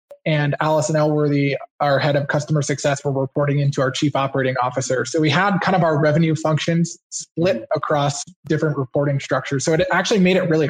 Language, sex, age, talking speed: English, male, 20-39, 195 wpm